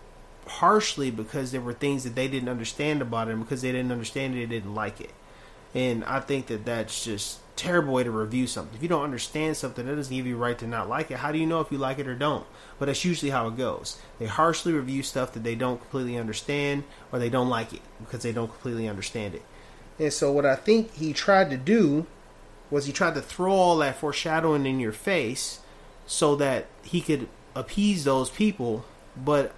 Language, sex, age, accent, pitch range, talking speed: English, male, 30-49, American, 125-160 Hz, 225 wpm